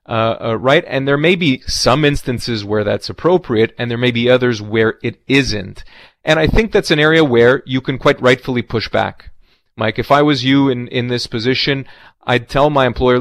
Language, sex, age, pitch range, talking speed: English, male, 30-49, 110-135 Hz, 210 wpm